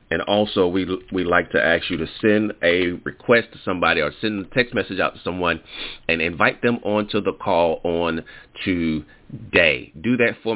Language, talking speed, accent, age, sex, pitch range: English, 190 wpm, American, 30-49, male, 80-100 Hz